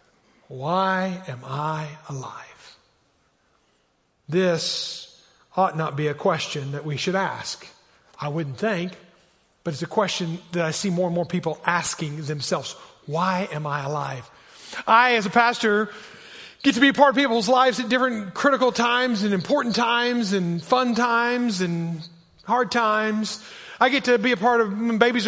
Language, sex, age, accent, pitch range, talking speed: English, male, 40-59, American, 170-225 Hz, 160 wpm